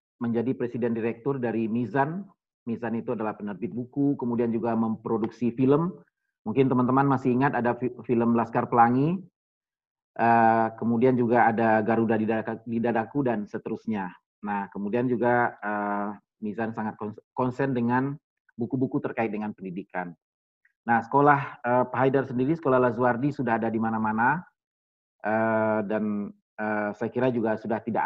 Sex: male